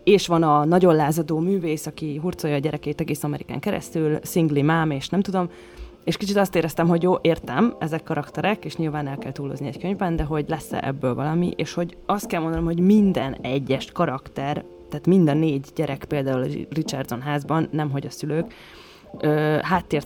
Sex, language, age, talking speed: female, Hungarian, 20-39, 180 wpm